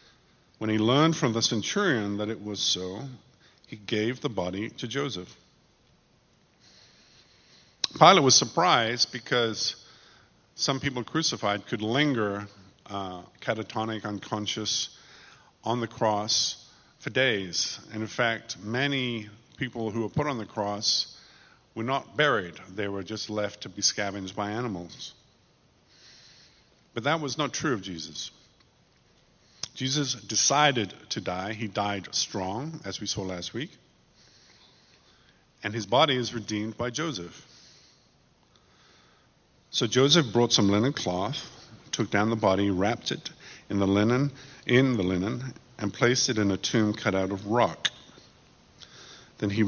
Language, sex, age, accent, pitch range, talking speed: English, male, 50-69, American, 100-125 Hz, 135 wpm